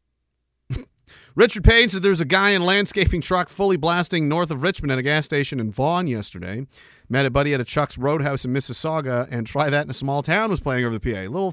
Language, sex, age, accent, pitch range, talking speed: English, male, 40-59, American, 110-160 Hz, 225 wpm